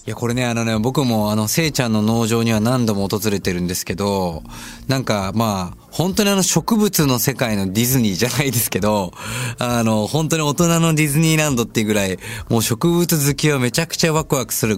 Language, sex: Japanese, male